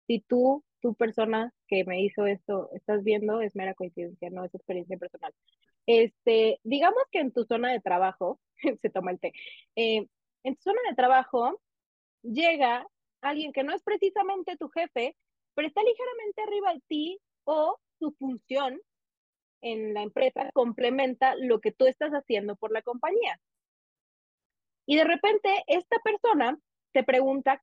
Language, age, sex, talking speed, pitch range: Spanish, 20-39, female, 155 wpm, 220-325 Hz